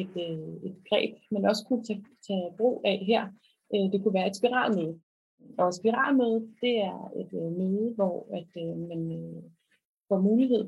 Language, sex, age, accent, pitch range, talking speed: Danish, female, 30-49, native, 185-235 Hz, 165 wpm